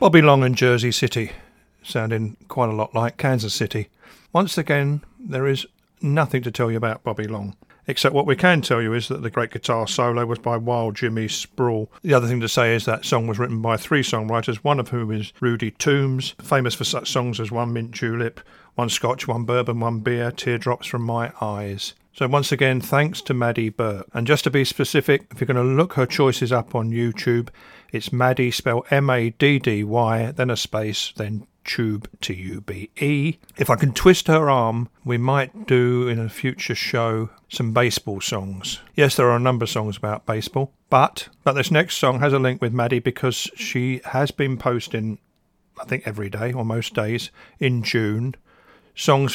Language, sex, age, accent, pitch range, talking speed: English, male, 50-69, British, 115-130 Hz, 195 wpm